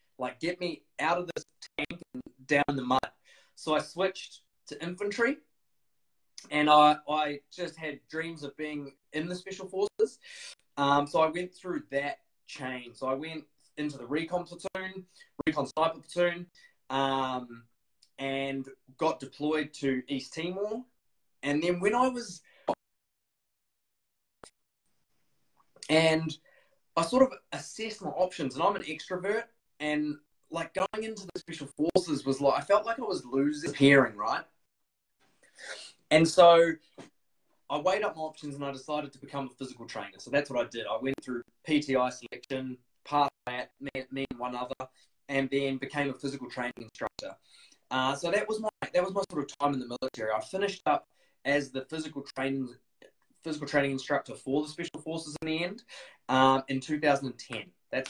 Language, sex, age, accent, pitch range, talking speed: English, male, 20-39, Australian, 135-175 Hz, 165 wpm